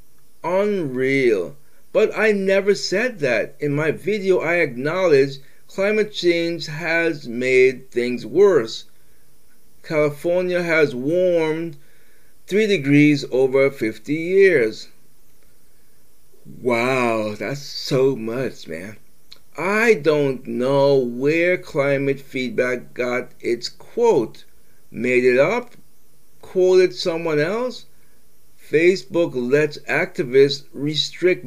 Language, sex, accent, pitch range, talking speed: English, male, American, 135-185 Hz, 95 wpm